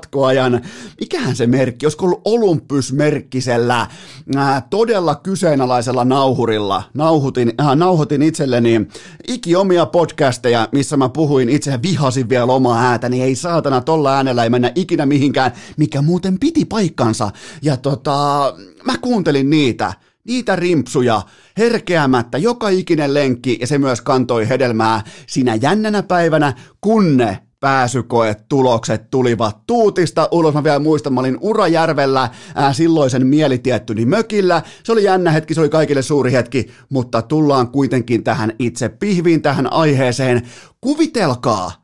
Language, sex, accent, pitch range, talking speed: Finnish, male, native, 130-175 Hz, 130 wpm